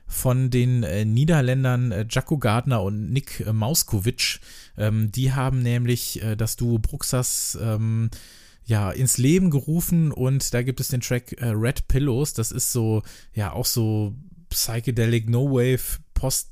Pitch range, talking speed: 105-130 Hz, 155 wpm